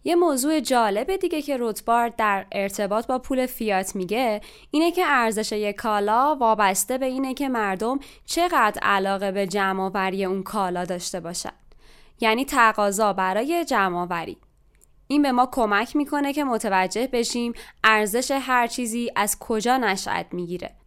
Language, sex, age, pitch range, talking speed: Persian, female, 20-39, 200-260 Hz, 145 wpm